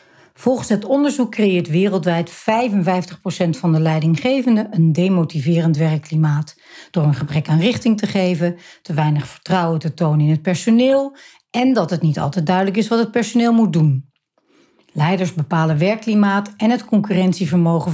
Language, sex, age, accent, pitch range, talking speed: Dutch, female, 60-79, Dutch, 165-220 Hz, 150 wpm